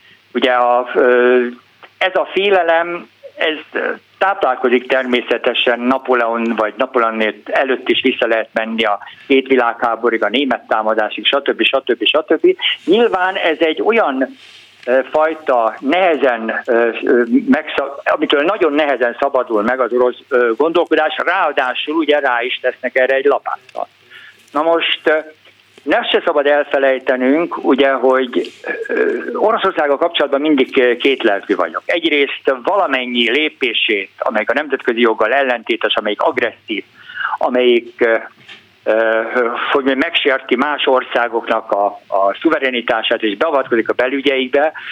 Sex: male